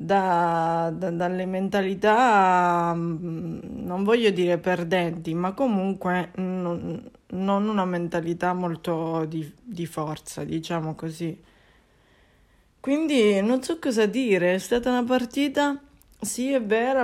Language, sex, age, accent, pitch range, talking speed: Italian, female, 20-39, native, 180-220 Hz, 115 wpm